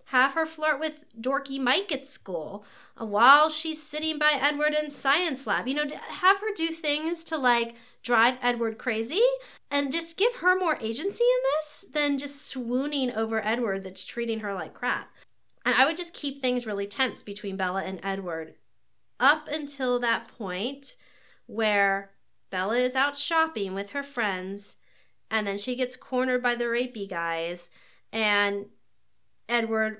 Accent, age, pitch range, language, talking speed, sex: American, 30-49, 220-310 Hz, English, 160 wpm, female